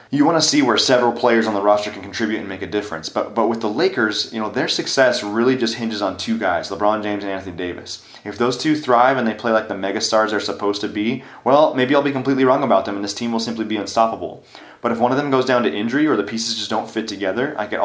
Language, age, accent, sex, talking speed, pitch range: English, 30-49, American, male, 280 wpm, 100-115 Hz